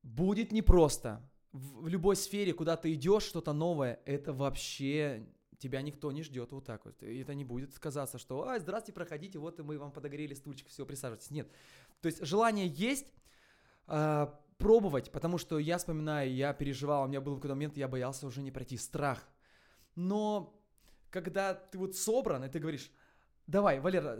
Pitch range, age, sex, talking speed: 135-180 Hz, 20-39, male, 170 wpm